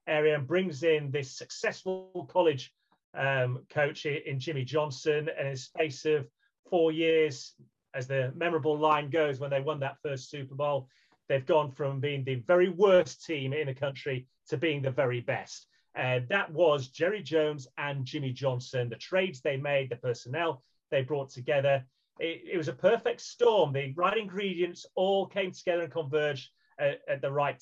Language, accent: English, British